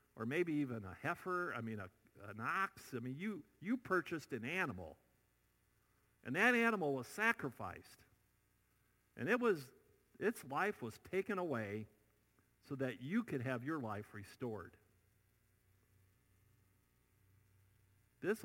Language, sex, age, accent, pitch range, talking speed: English, male, 50-69, American, 95-145 Hz, 125 wpm